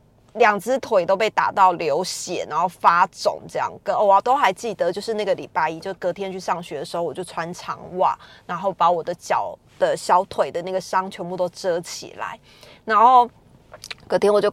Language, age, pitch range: Chinese, 20-39, 180-255 Hz